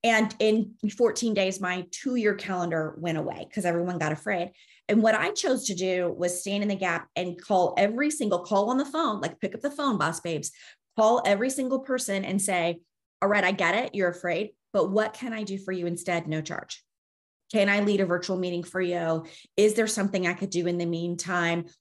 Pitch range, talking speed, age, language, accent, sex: 175-210 Hz, 215 wpm, 30-49, English, American, female